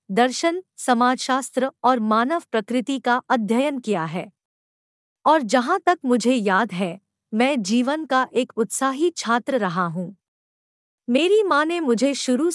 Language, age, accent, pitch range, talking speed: Hindi, 50-69, native, 220-290 Hz, 135 wpm